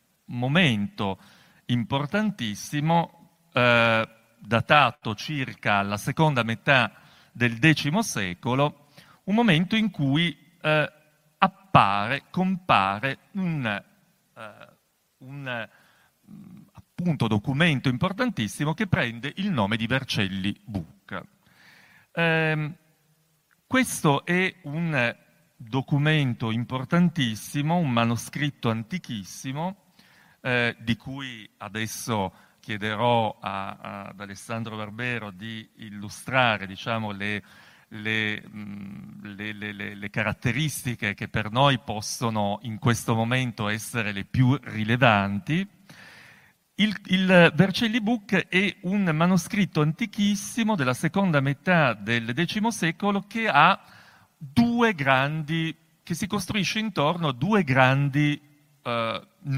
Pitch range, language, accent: 115-170 Hz, Italian, native